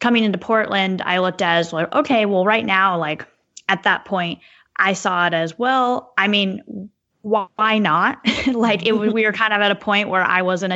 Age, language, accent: 10-29, English, American